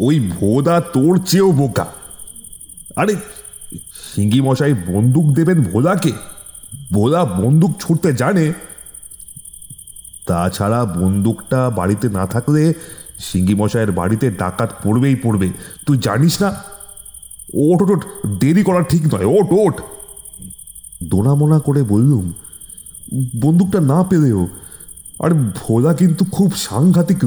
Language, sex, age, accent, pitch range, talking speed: Bengali, male, 30-49, native, 95-155 Hz, 110 wpm